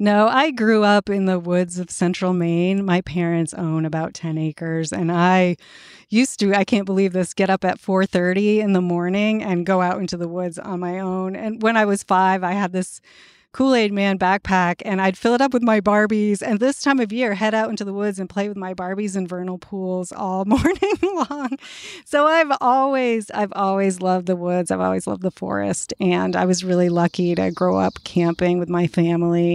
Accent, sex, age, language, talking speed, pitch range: American, female, 30-49, English, 215 wpm, 175-210 Hz